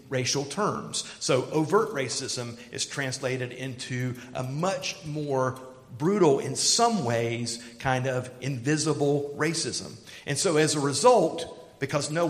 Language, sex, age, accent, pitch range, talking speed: English, male, 50-69, American, 125-155 Hz, 125 wpm